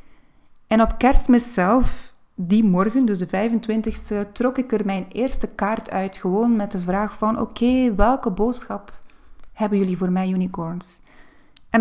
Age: 30-49